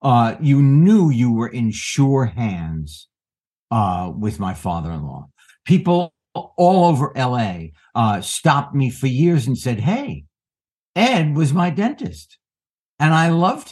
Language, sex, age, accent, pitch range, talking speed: English, male, 60-79, American, 110-155 Hz, 135 wpm